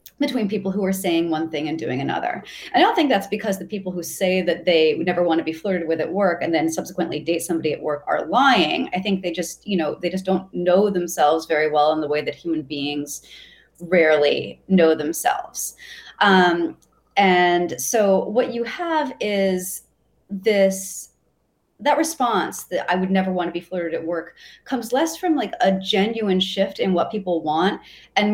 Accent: American